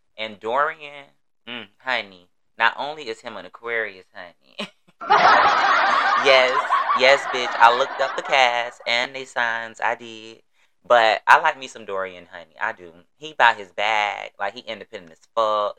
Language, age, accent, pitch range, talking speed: English, 20-39, American, 105-135 Hz, 160 wpm